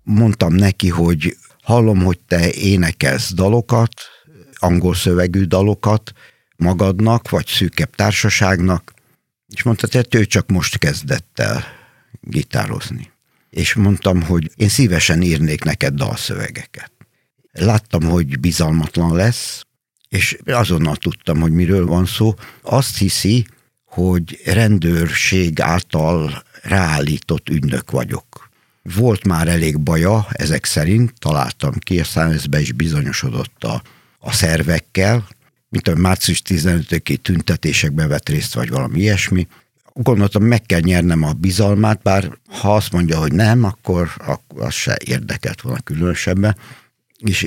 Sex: male